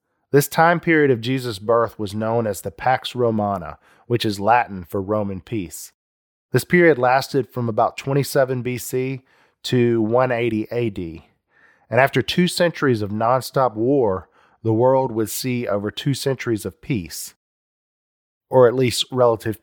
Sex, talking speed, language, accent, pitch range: male, 145 wpm, English, American, 100-130 Hz